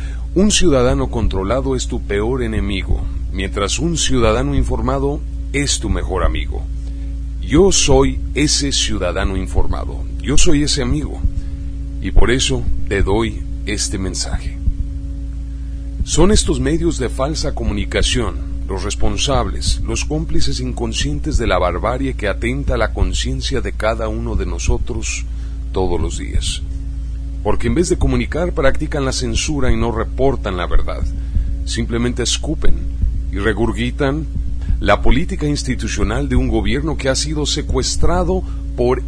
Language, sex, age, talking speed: Spanish, male, 40-59, 130 wpm